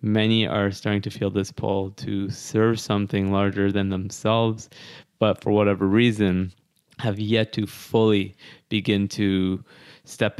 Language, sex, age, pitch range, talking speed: English, male, 20-39, 100-115 Hz, 140 wpm